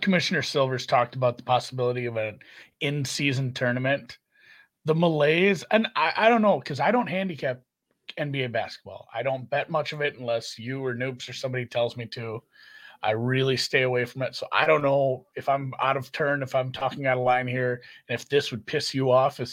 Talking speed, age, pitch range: 210 wpm, 30-49, 115-140 Hz